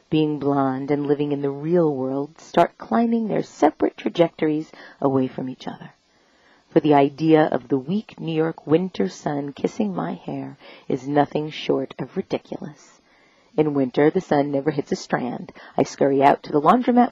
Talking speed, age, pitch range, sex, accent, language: 170 wpm, 40-59, 140-175 Hz, female, American, English